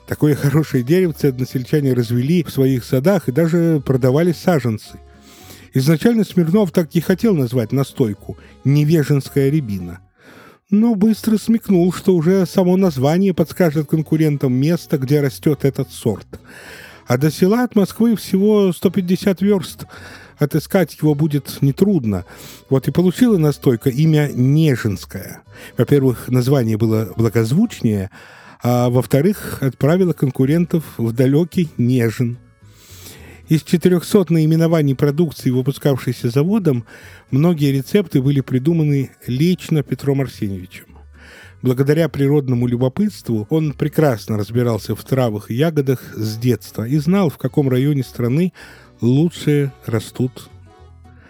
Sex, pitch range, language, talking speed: male, 120-170 Hz, Russian, 115 wpm